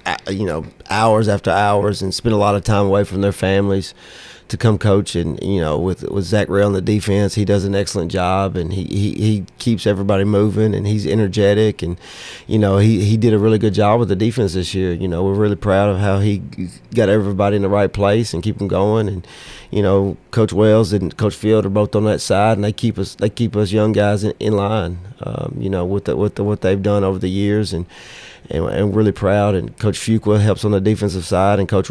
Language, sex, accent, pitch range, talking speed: English, male, American, 95-105 Hz, 245 wpm